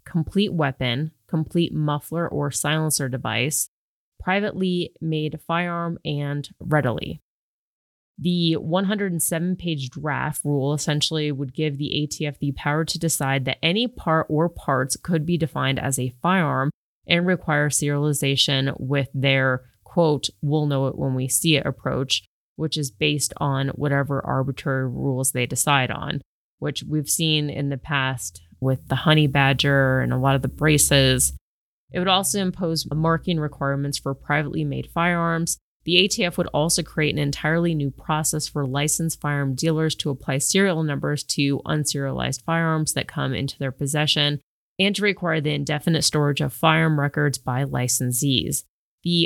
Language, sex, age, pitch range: English, female, 20-39, 135-160 Hz